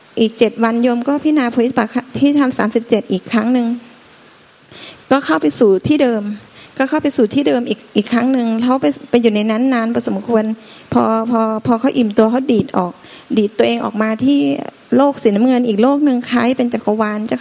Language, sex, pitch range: Thai, female, 225-265 Hz